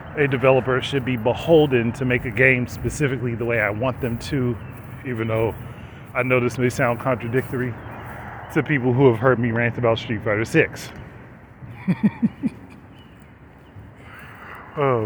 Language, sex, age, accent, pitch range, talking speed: English, male, 30-49, American, 115-140 Hz, 145 wpm